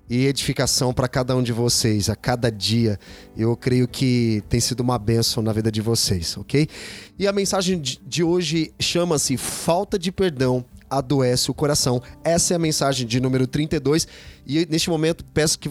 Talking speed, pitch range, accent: 175 wpm, 125-165 Hz, Brazilian